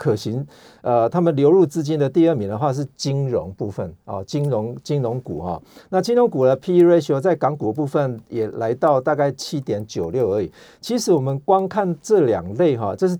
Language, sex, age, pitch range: Chinese, male, 50-69, 120-165 Hz